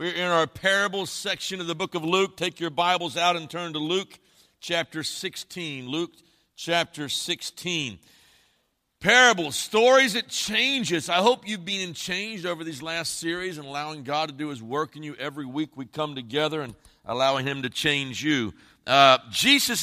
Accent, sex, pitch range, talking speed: American, male, 145-180 Hz, 180 wpm